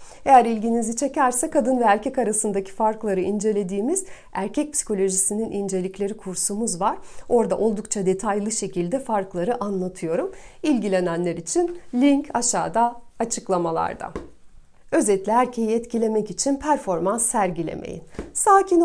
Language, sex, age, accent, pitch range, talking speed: Turkish, female, 40-59, native, 205-280 Hz, 100 wpm